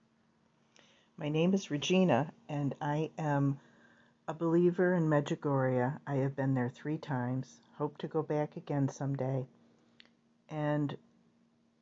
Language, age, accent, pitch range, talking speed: English, 50-69, American, 130-150 Hz, 120 wpm